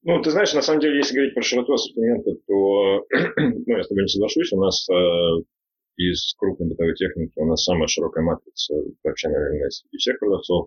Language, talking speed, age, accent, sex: Russian, 195 wpm, 30-49, native, male